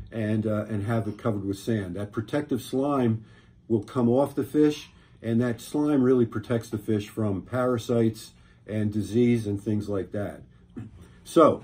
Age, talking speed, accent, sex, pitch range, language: 50-69, 165 wpm, American, male, 110-135 Hz, English